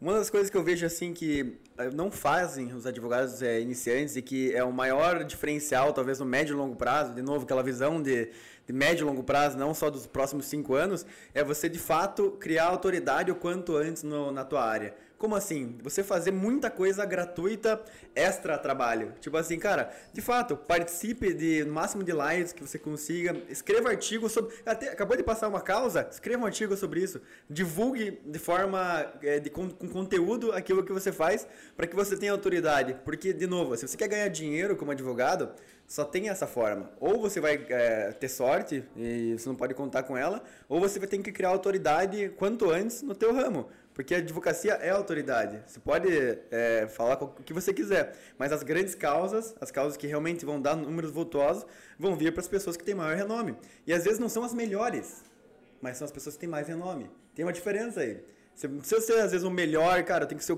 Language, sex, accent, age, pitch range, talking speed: Portuguese, male, Brazilian, 20-39, 145-195 Hz, 210 wpm